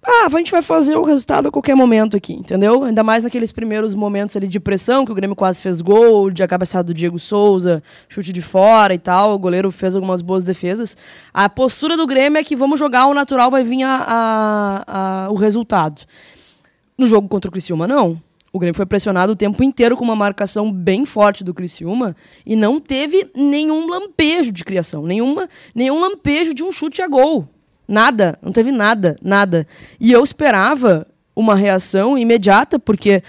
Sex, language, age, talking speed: female, Portuguese, 20-39, 185 wpm